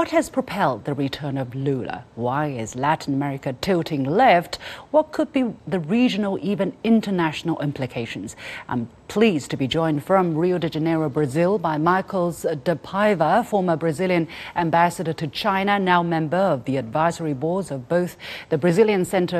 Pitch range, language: 155-195 Hz, English